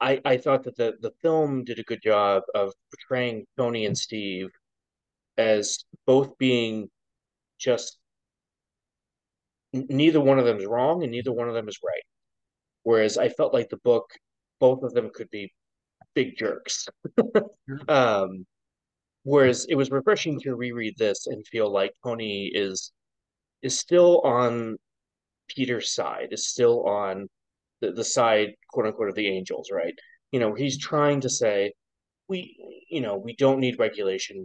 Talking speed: 155 wpm